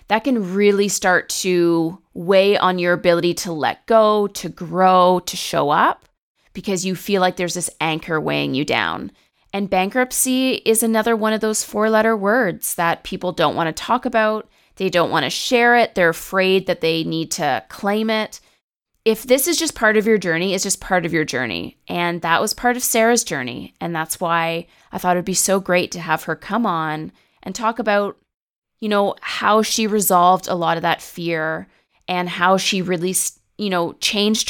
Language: English